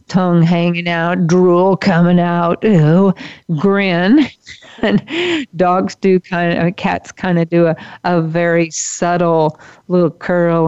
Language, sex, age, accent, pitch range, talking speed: English, female, 50-69, American, 160-180 Hz, 130 wpm